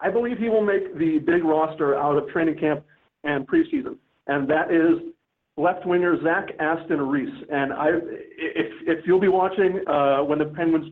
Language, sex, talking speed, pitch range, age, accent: English, male, 180 wpm, 155-215 Hz, 40-59, American